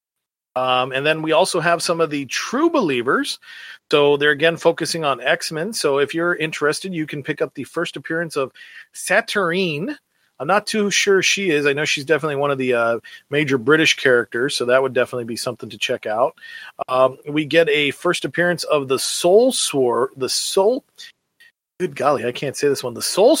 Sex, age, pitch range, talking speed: male, 40-59, 125-165 Hz, 195 wpm